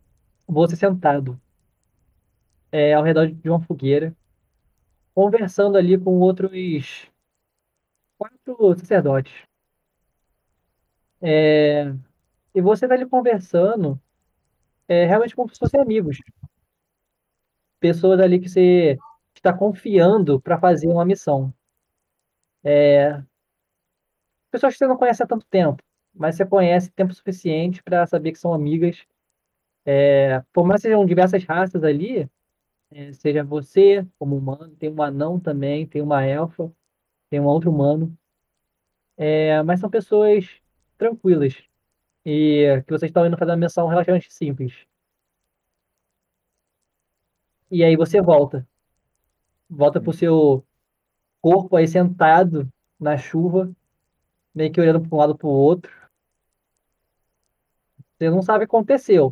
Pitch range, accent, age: 145-185 Hz, Brazilian, 20-39